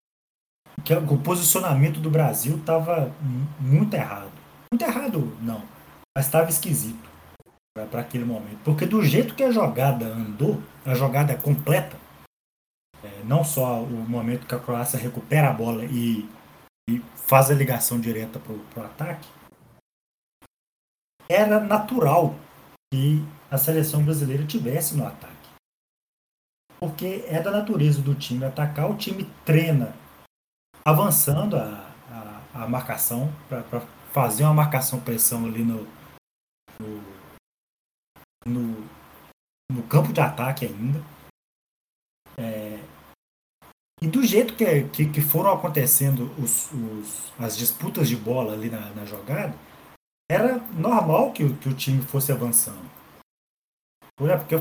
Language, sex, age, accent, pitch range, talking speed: Portuguese, male, 20-39, Brazilian, 115-155 Hz, 115 wpm